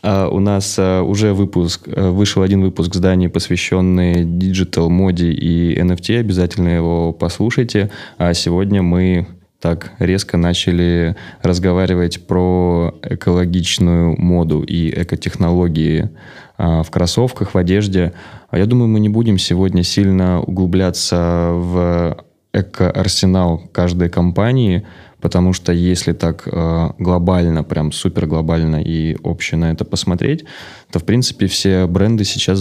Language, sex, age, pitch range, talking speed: Russian, male, 20-39, 85-95 Hz, 125 wpm